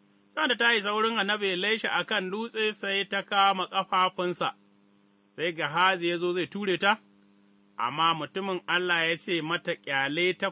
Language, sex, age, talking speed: English, male, 30-49, 145 wpm